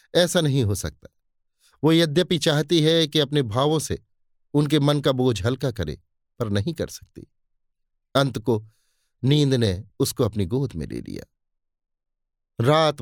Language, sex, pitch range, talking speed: Hindi, male, 100-135 Hz, 150 wpm